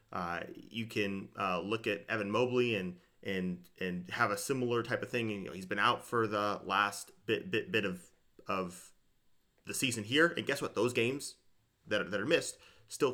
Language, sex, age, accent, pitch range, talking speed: English, male, 30-49, American, 110-130 Hz, 200 wpm